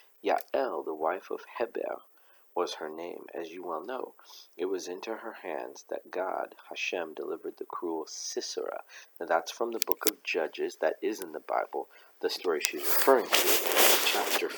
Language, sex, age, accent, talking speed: English, male, 40-59, American, 175 wpm